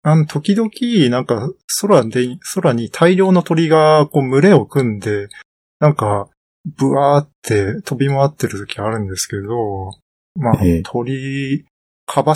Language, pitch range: Japanese, 110-155 Hz